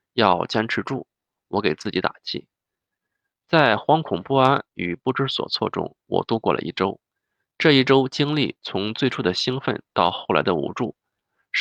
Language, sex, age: Chinese, male, 20-39